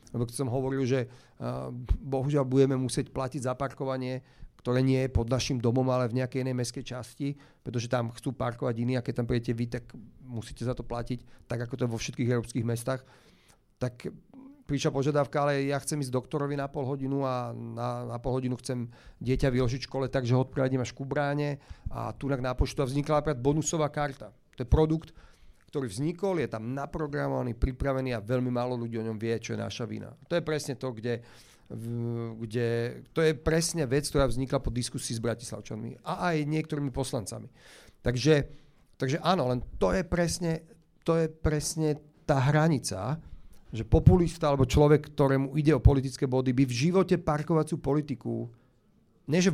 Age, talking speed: 40-59, 180 wpm